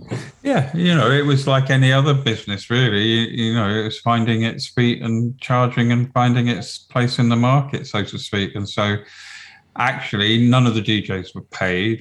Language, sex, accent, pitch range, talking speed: English, male, British, 95-120 Hz, 195 wpm